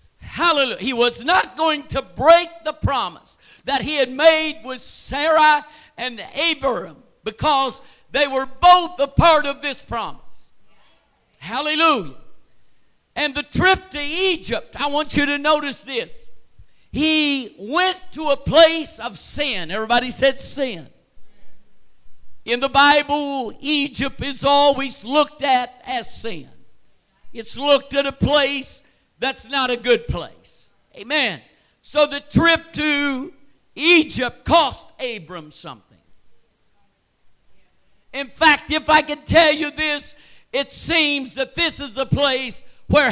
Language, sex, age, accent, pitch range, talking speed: English, male, 50-69, American, 245-305 Hz, 130 wpm